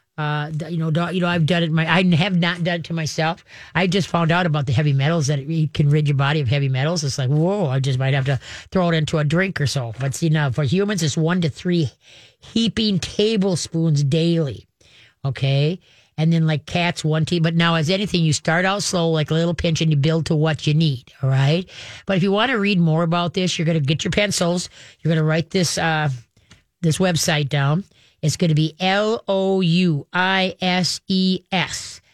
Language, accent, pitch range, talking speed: English, American, 150-180 Hz, 230 wpm